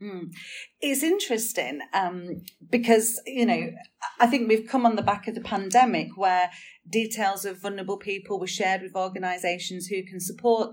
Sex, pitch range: female, 185-230 Hz